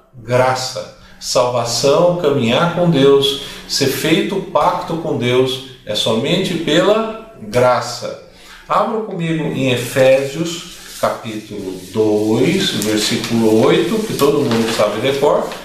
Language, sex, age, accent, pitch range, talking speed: Portuguese, male, 50-69, Brazilian, 135-180 Hz, 105 wpm